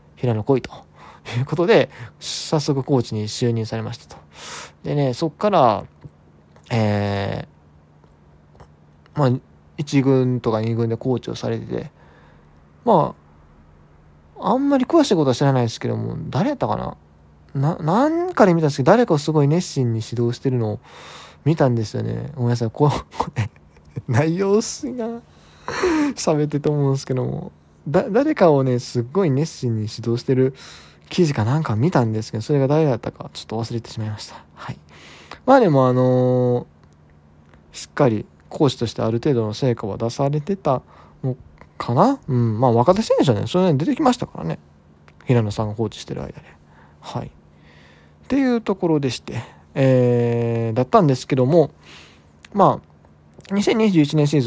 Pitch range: 100-150 Hz